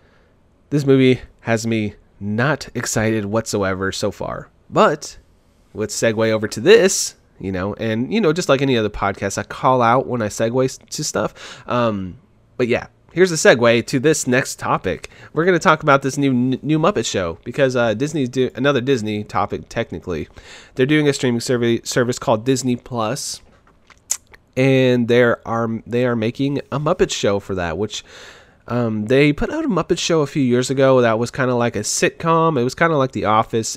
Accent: American